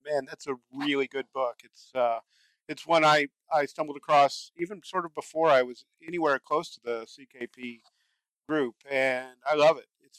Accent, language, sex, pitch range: American, English, male, 125-145 Hz